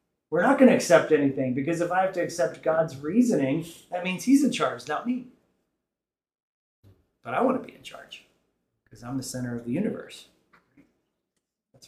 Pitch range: 135-170 Hz